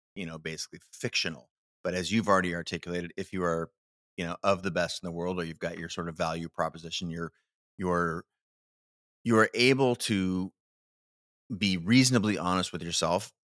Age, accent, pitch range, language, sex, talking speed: 30-49, American, 85-100 Hz, English, male, 170 wpm